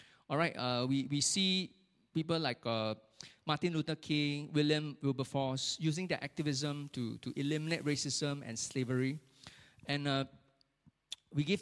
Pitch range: 135-175 Hz